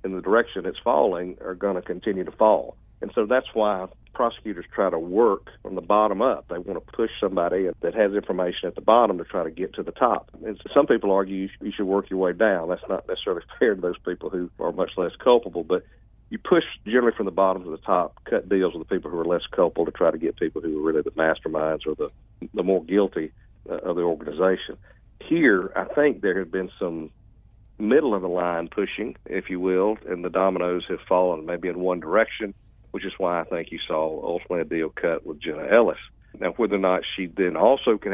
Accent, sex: American, male